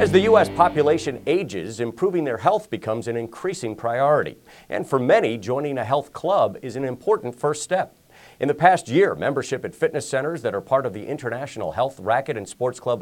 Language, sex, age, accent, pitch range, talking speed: English, male, 40-59, American, 115-155 Hz, 200 wpm